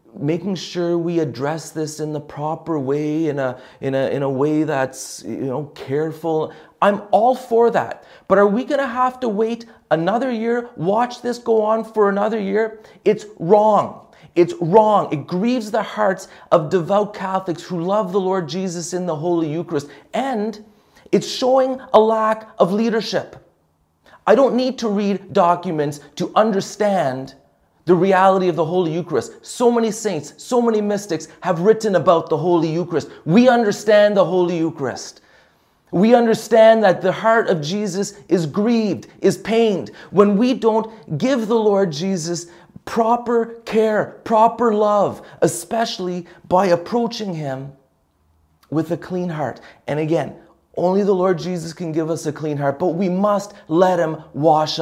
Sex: male